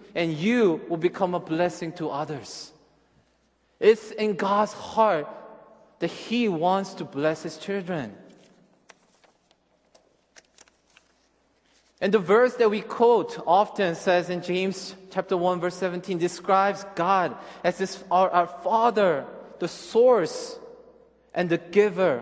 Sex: male